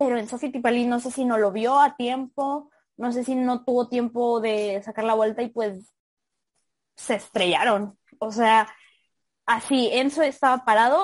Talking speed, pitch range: 170 wpm, 215-260 Hz